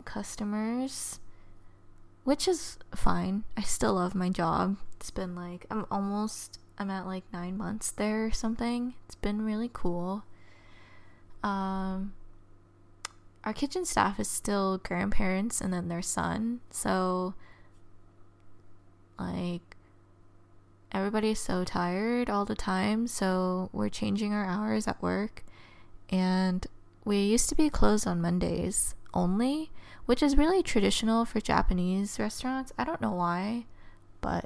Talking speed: 125 wpm